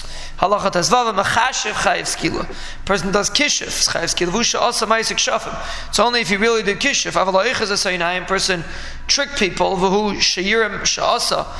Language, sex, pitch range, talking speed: English, male, 185-210 Hz, 155 wpm